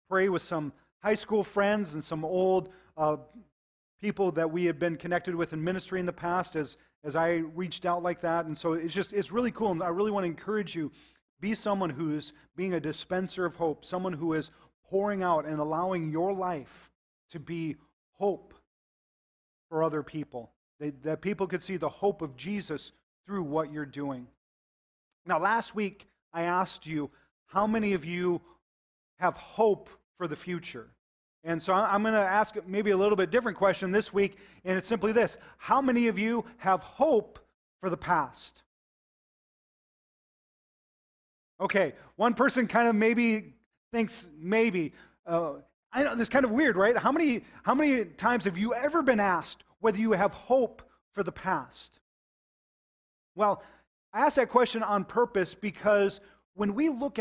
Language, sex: English, male